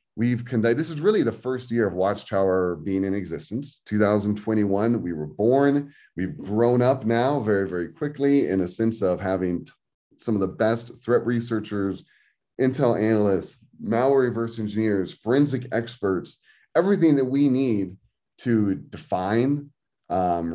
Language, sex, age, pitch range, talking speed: English, male, 30-49, 100-130 Hz, 145 wpm